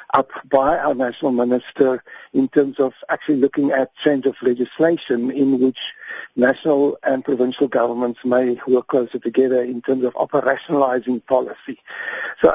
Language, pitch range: English, 130-155 Hz